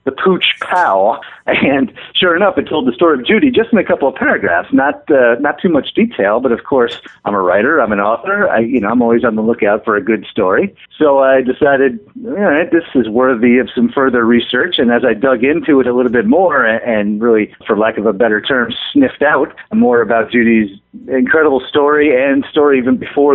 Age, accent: 50-69, American